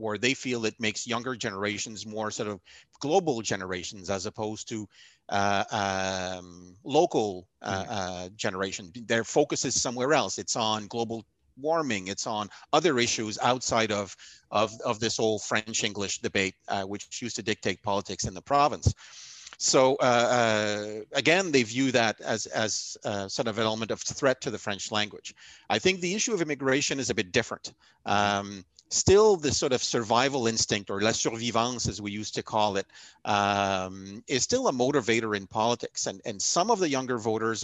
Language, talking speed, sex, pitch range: English, 175 wpm, male, 100-125 Hz